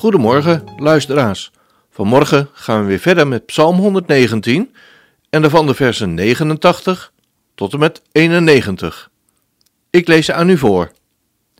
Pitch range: 115-180 Hz